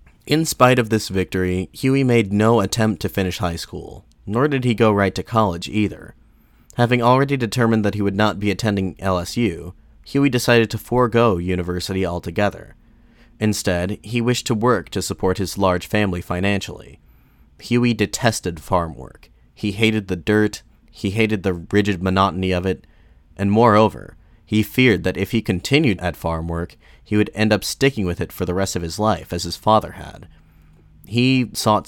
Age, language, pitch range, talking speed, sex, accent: 30-49, English, 90-110 Hz, 175 wpm, male, American